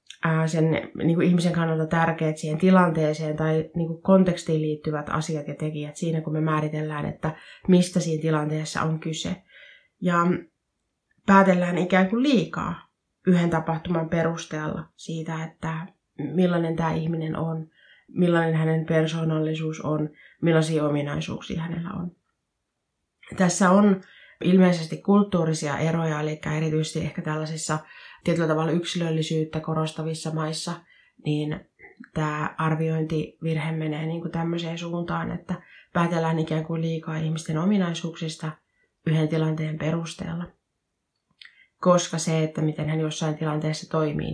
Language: Finnish